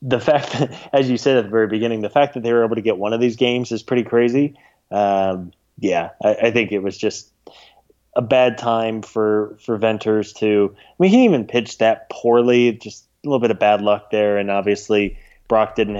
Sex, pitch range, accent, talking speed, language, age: male, 105-120 Hz, American, 225 wpm, English, 20-39